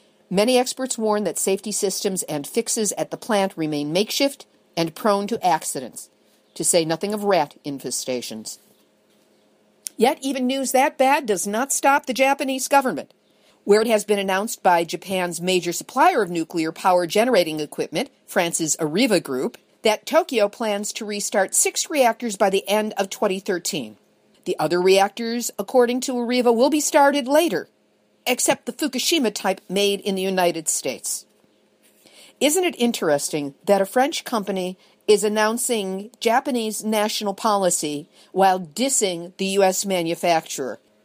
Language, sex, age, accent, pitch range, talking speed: English, female, 50-69, American, 175-240 Hz, 145 wpm